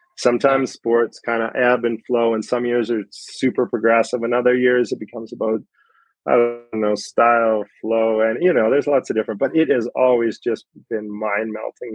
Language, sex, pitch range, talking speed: English, male, 110-120 Hz, 195 wpm